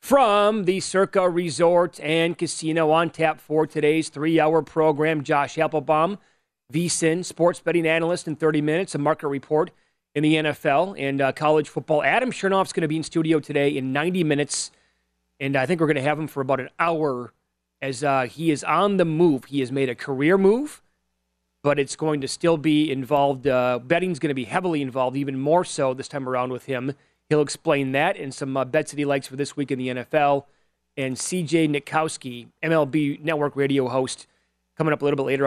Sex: male